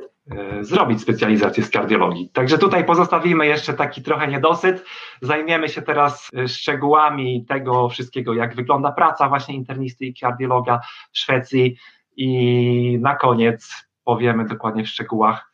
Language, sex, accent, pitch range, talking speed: Polish, male, native, 125-150 Hz, 125 wpm